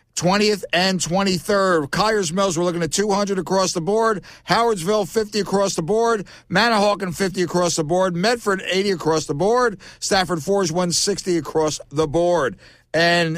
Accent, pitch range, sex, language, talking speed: American, 160-195 Hz, male, English, 160 wpm